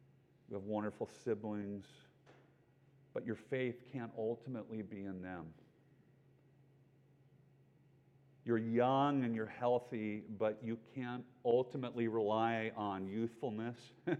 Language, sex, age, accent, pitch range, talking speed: English, male, 50-69, American, 110-140 Hz, 100 wpm